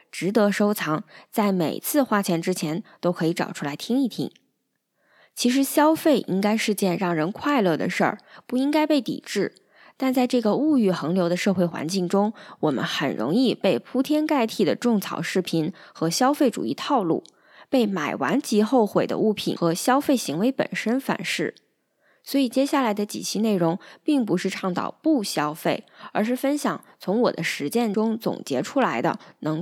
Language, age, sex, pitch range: Chinese, 20-39, female, 175-265 Hz